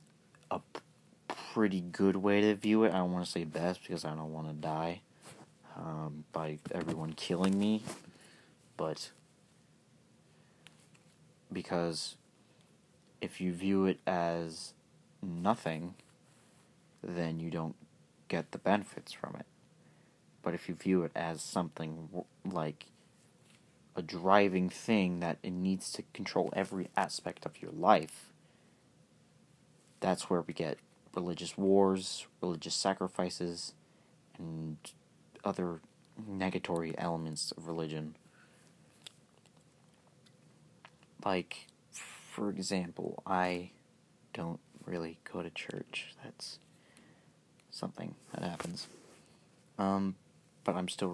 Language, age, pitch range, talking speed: English, 30-49, 80-95 Hz, 105 wpm